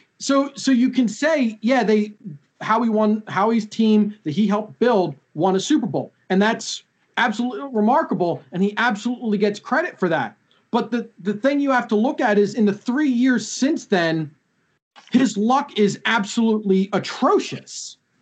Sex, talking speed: male, 170 wpm